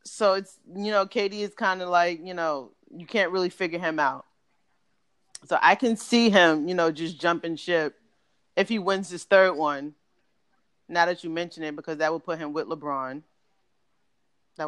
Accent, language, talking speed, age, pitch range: American, English, 190 wpm, 30-49, 145-170 Hz